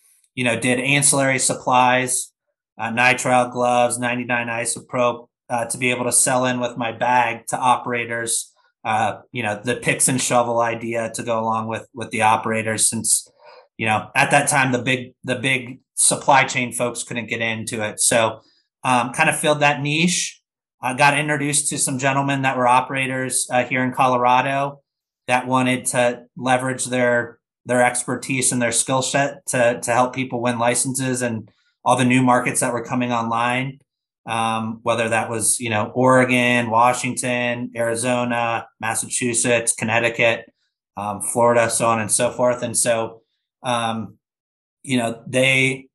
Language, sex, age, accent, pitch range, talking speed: English, male, 30-49, American, 120-130 Hz, 160 wpm